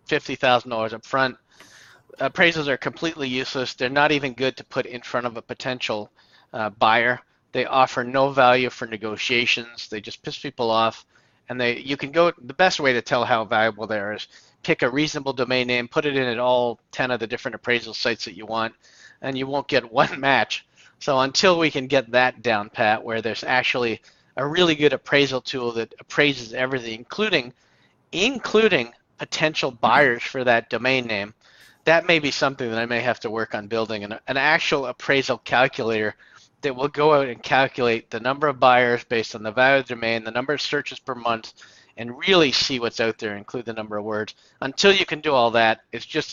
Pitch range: 115-135 Hz